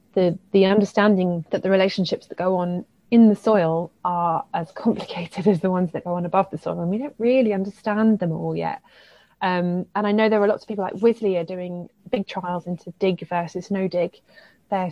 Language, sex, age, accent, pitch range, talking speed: English, female, 20-39, British, 180-215 Hz, 215 wpm